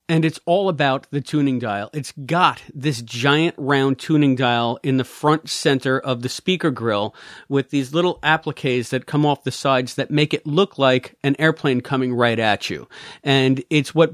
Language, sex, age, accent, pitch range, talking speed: English, male, 40-59, American, 130-160 Hz, 190 wpm